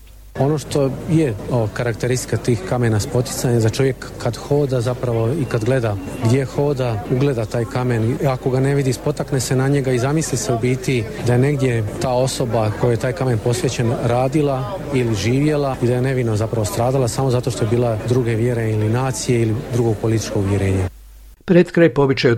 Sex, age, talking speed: male, 40-59, 185 wpm